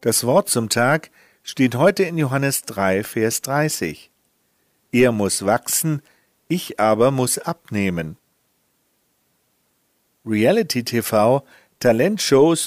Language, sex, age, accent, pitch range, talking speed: German, male, 50-69, German, 110-160 Hz, 100 wpm